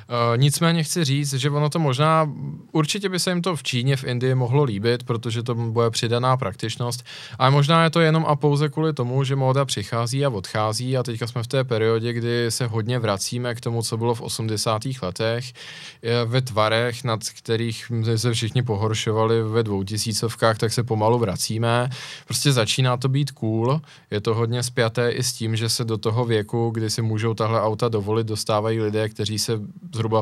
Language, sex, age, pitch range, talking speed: Czech, male, 20-39, 110-130 Hz, 195 wpm